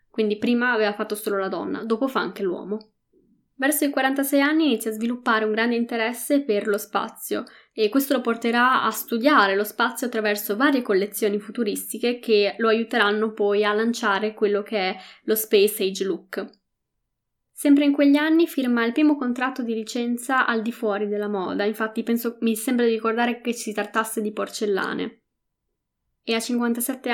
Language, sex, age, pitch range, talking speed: Italian, female, 10-29, 210-240 Hz, 170 wpm